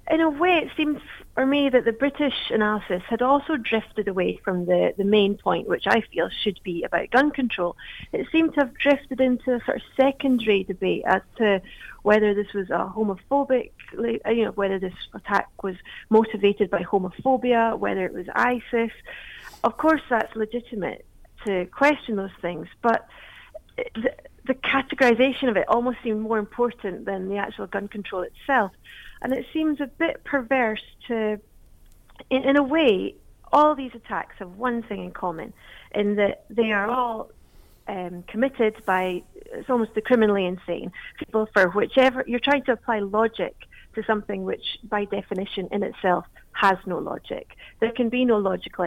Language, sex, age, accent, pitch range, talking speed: English, female, 40-59, British, 190-255 Hz, 170 wpm